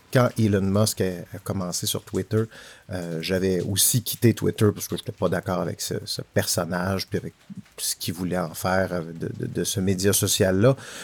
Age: 50-69